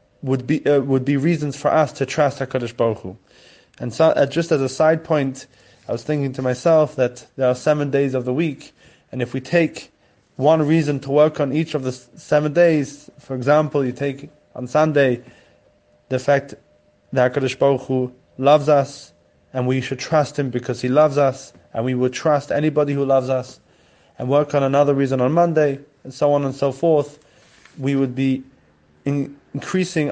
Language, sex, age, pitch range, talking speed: English, male, 20-39, 130-155 Hz, 195 wpm